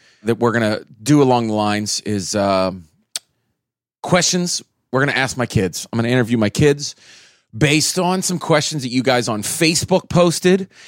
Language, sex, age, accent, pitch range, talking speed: English, male, 30-49, American, 105-135 Hz, 180 wpm